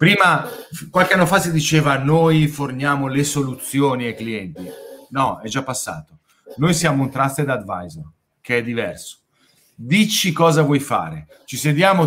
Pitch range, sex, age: 130-160 Hz, male, 40-59